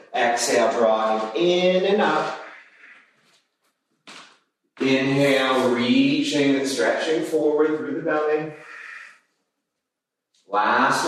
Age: 40-59